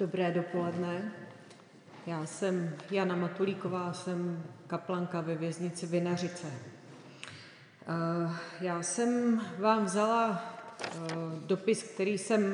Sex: female